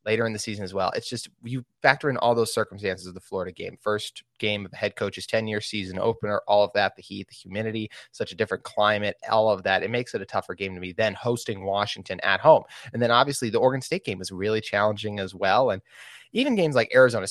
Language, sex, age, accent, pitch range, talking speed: English, male, 20-39, American, 105-125 Hz, 245 wpm